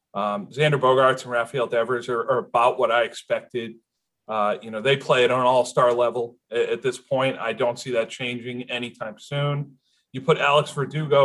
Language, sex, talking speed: English, male, 185 wpm